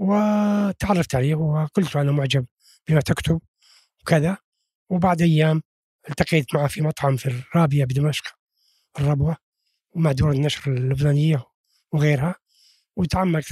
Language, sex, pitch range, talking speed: Arabic, male, 140-180 Hz, 110 wpm